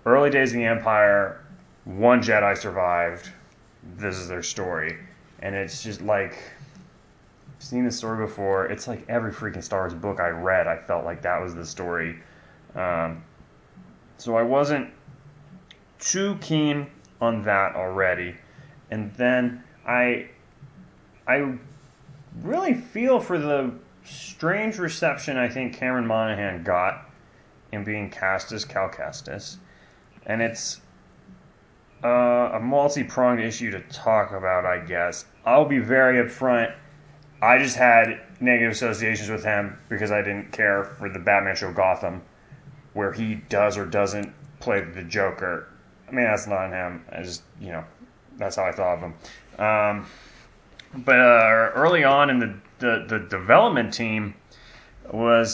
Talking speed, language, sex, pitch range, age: 145 wpm, English, male, 100-135 Hz, 20-39